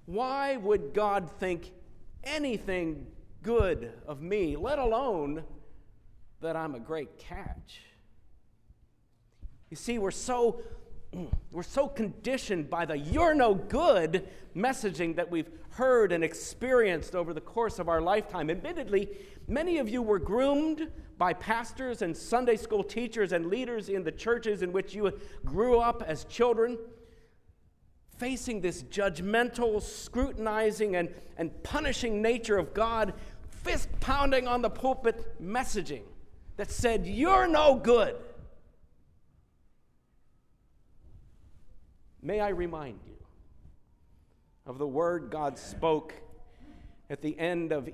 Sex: male